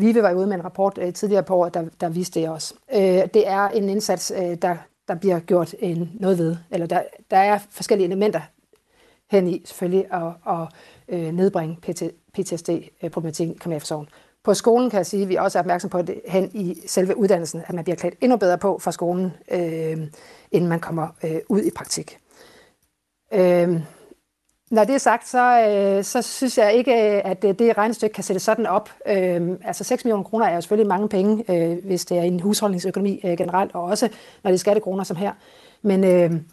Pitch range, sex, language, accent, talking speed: 175-205 Hz, female, Danish, native, 195 wpm